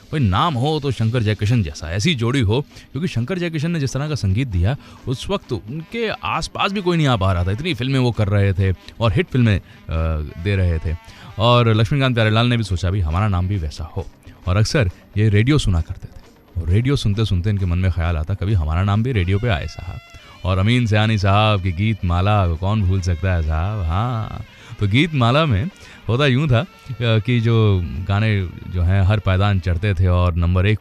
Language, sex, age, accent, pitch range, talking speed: English, male, 30-49, Indian, 90-115 Hz, 155 wpm